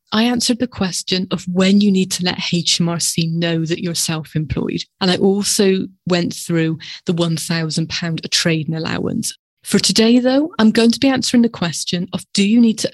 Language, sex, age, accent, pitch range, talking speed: English, female, 30-49, British, 170-210 Hz, 180 wpm